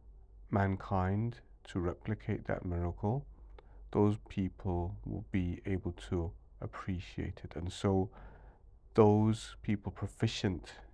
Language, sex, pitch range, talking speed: English, male, 90-100 Hz, 100 wpm